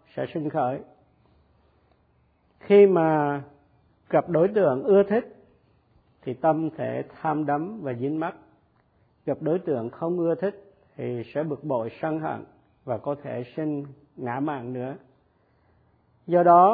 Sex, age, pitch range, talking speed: male, 50-69, 130-170 Hz, 140 wpm